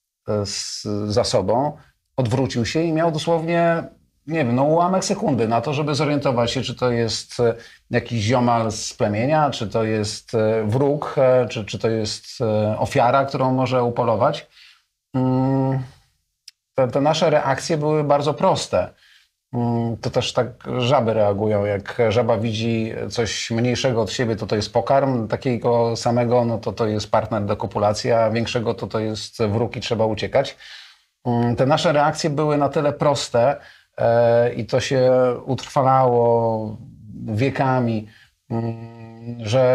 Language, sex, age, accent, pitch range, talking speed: Polish, male, 40-59, native, 115-140 Hz, 135 wpm